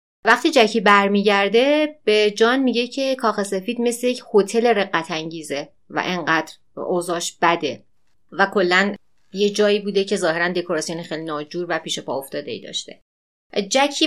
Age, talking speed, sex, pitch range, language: 30-49, 145 wpm, female, 180-235 Hz, Persian